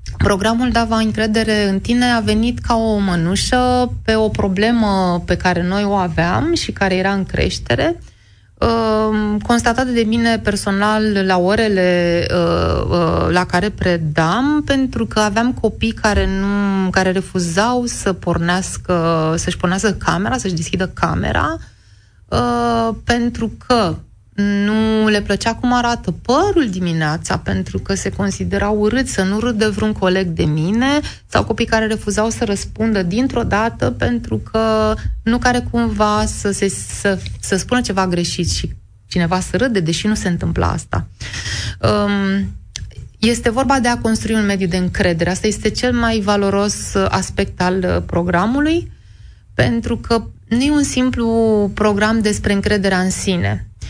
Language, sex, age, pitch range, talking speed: Romanian, female, 30-49, 170-225 Hz, 140 wpm